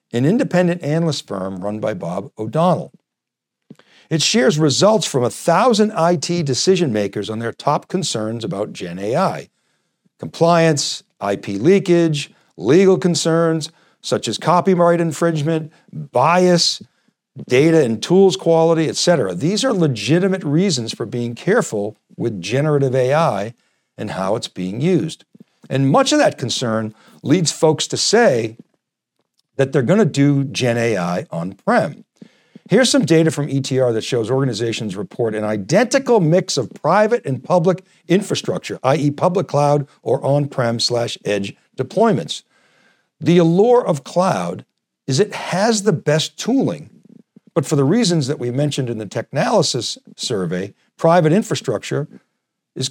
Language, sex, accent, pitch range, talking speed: English, male, American, 130-180 Hz, 135 wpm